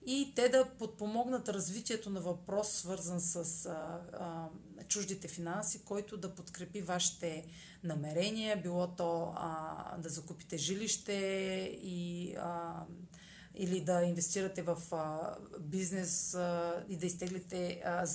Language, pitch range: Bulgarian, 175-210 Hz